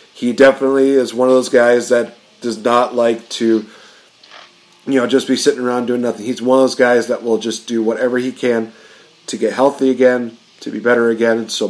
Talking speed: 210 wpm